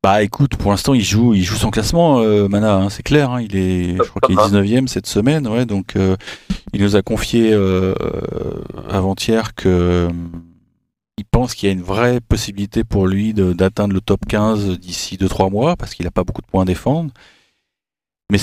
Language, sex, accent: French, male, French